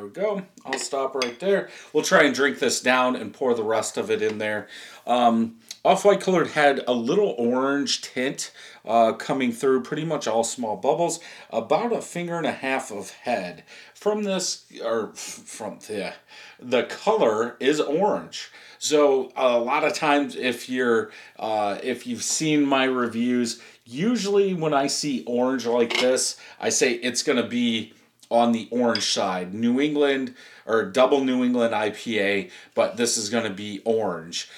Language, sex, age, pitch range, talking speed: English, male, 40-59, 115-145 Hz, 165 wpm